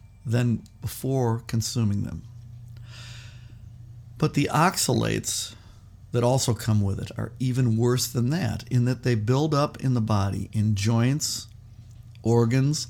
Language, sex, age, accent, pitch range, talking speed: English, male, 50-69, American, 110-125 Hz, 130 wpm